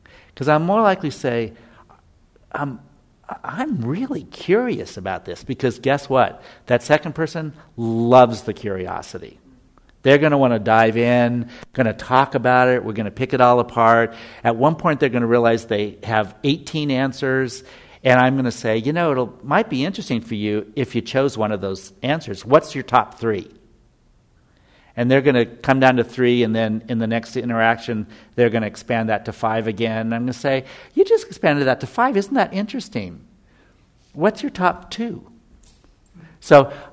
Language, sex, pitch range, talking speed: English, male, 110-145 Hz, 190 wpm